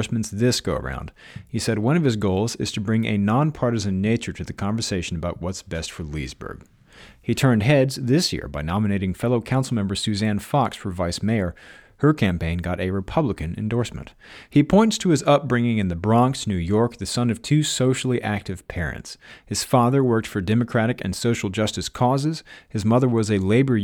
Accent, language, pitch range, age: American, English, 100-135 Hz, 40-59